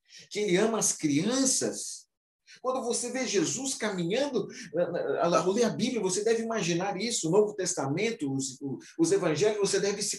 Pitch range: 140-210 Hz